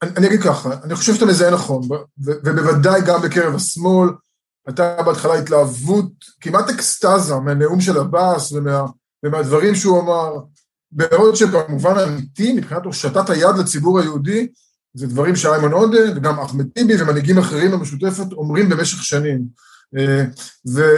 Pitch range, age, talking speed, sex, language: 145-195 Hz, 20-39, 135 wpm, male, Hebrew